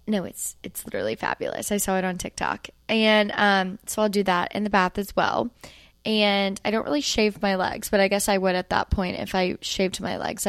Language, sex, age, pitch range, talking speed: English, female, 10-29, 190-225 Hz, 235 wpm